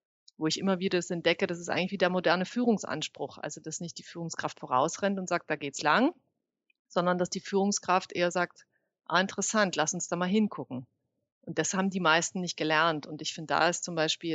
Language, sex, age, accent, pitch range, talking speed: German, female, 30-49, German, 165-205 Hz, 215 wpm